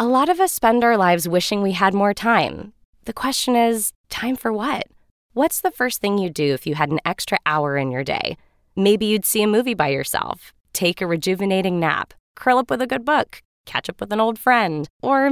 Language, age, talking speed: English, 20-39, 225 wpm